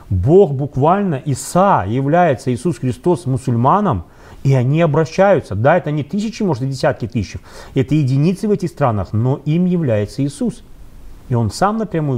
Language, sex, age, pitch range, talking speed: Russian, male, 30-49, 125-175 Hz, 155 wpm